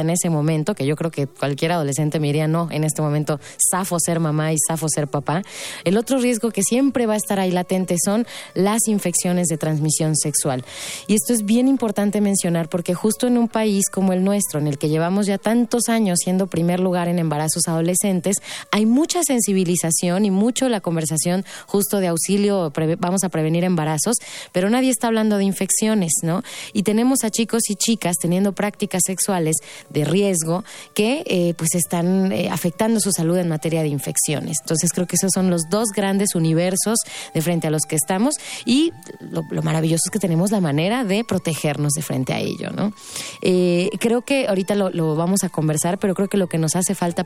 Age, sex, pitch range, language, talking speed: 20-39, female, 165-205 Hz, Spanish, 200 wpm